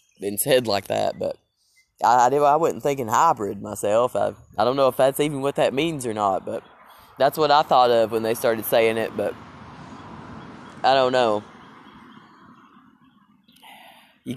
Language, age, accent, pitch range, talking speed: English, 20-39, American, 110-135 Hz, 170 wpm